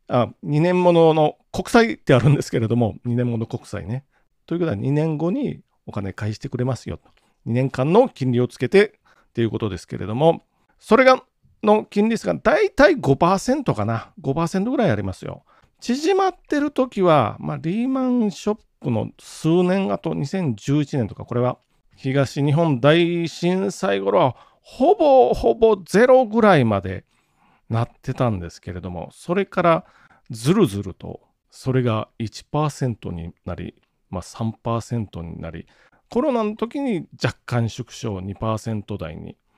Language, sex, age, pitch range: Japanese, male, 40-59, 115-190 Hz